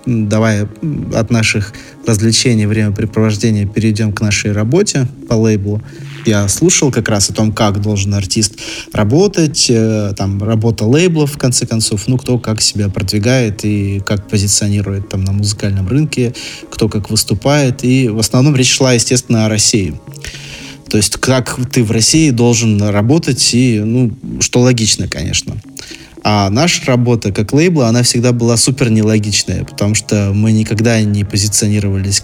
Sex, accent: male, native